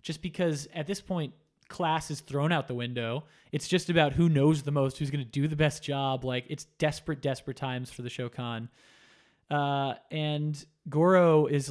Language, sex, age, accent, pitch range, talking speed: English, male, 20-39, American, 130-155 Hz, 190 wpm